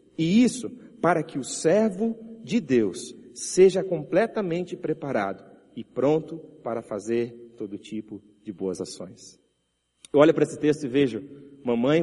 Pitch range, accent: 140-195 Hz, Brazilian